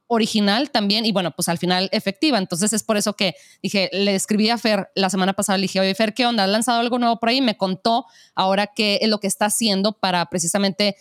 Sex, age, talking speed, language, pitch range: female, 20-39, 240 wpm, Spanish, 195-235 Hz